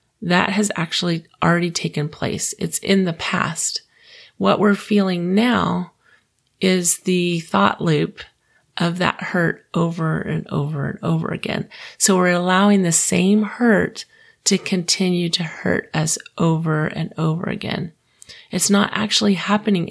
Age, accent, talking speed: 30-49, American, 140 wpm